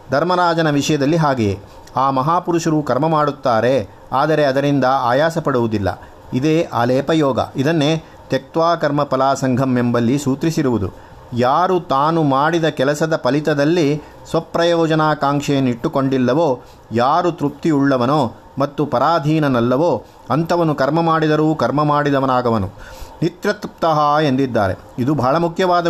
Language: Kannada